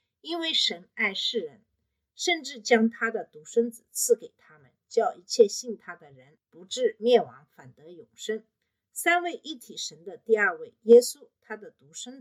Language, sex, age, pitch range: Chinese, female, 50-69, 195-315 Hz